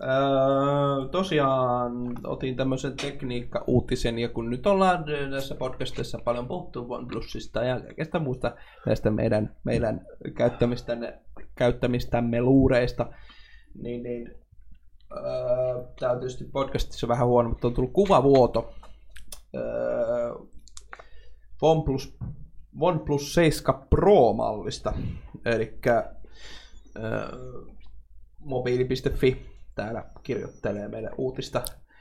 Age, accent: 20-39, native